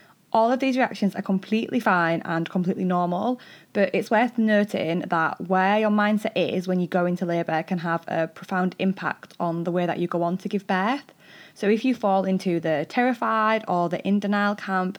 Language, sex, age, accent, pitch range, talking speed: English, female, 20-39, British, 170-210 Hz, 205 wpm